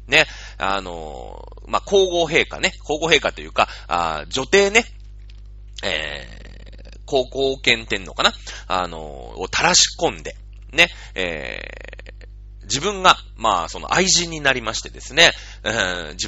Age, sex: 30-49, male